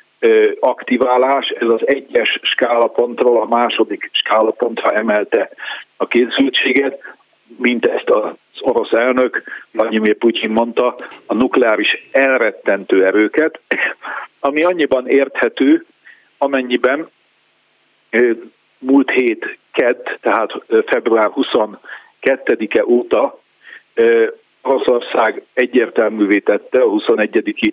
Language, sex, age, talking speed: Hungarian, male, 50-69, 85 wpm